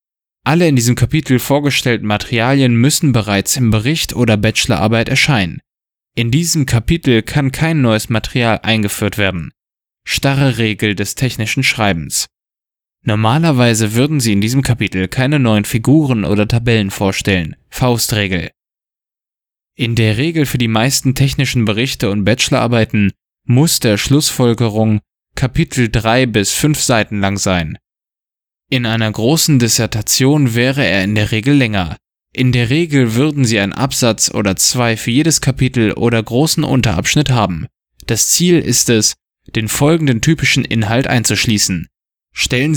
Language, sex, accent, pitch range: German, male, German, 110-135 Hz